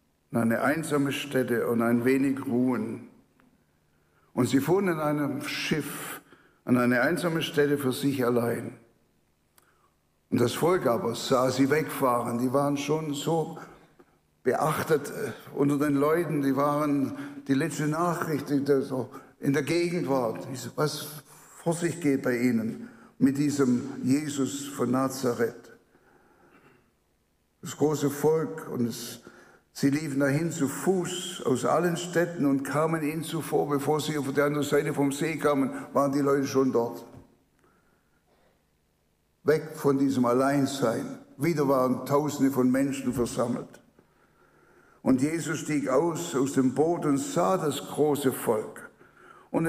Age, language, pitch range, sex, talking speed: 60-79, German, 125-150 Hz, male, 135 wpm